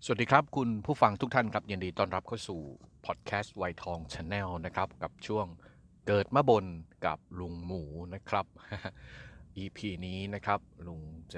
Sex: male